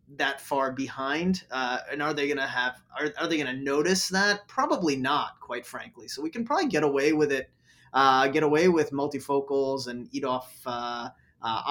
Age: 20-39